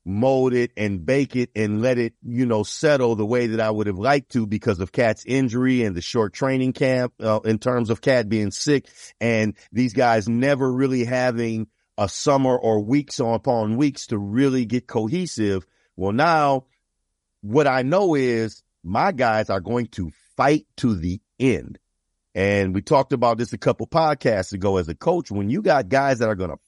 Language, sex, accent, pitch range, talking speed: English, male, American, 110-145 Hz, 195 wpm